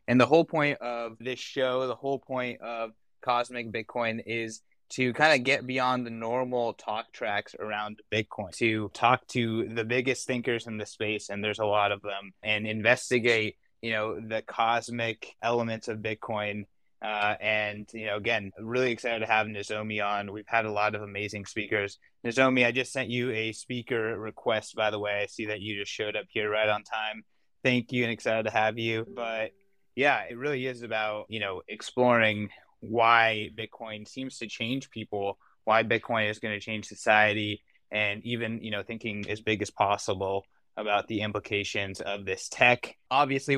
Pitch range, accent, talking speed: 105-120 Hz, American, 185 wpm